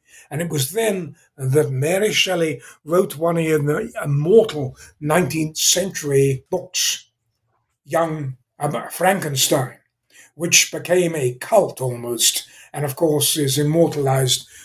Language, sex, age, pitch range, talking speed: English, male, 60-79, 140-180 Hz, 110 wpm